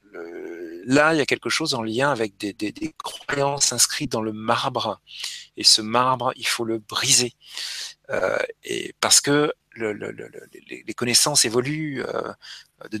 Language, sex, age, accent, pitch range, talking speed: French, male, 40-59, French, 115-160 Hz, 170 wpm